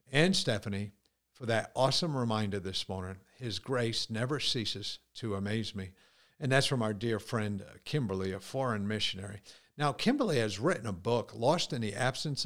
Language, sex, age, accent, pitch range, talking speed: English, male, 50-69, American, 105-135 Hz, 170 wpm